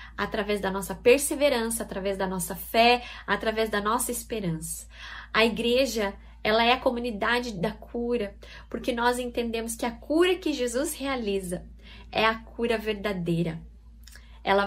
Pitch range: 195-240 Hz